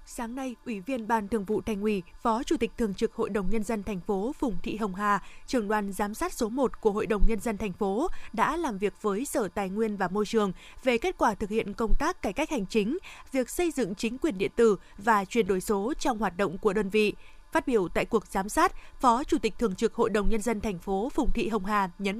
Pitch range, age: 210-260 Hz, 20-39